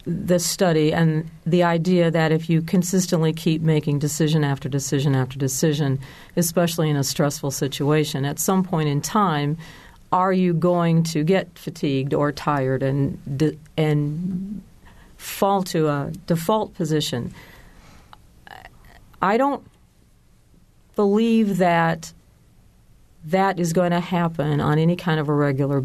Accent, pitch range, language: American, 155-195 Hz, English